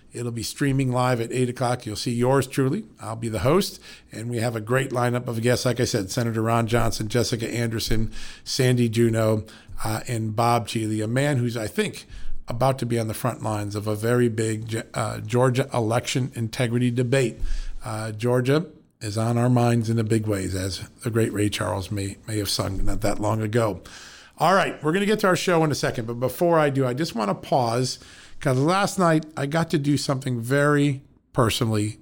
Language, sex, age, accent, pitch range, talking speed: English, male, 50-69, American, 110-140 Hz, 210 wpm